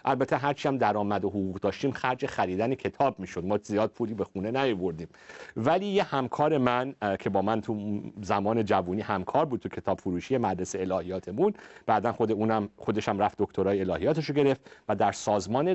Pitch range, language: 95-130 Hz, Persian